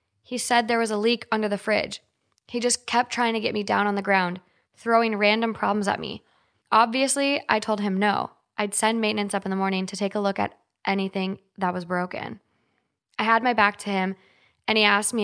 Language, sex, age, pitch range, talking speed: English, female, 10-29, 190-220 Hz, 220 wpm